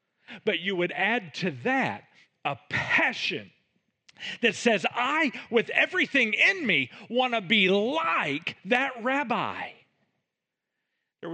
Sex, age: male, 40-59